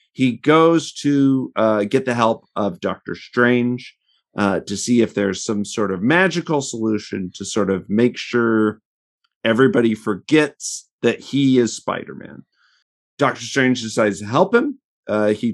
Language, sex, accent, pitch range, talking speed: English, male, American, 110-150 Hz, 150 wpm